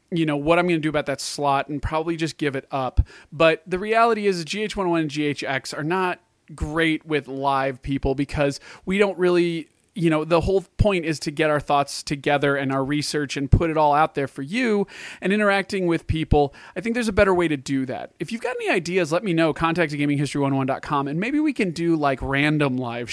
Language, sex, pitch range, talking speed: English, male, 135-170 Hz, 225 wpm